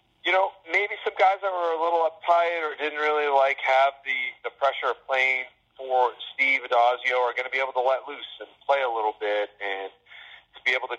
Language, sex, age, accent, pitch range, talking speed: English, male, 40-59, American, 120-150 Hz, 220 wpm